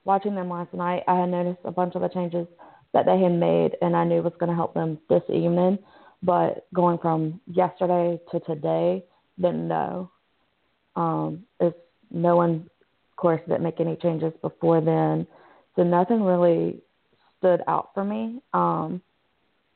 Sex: female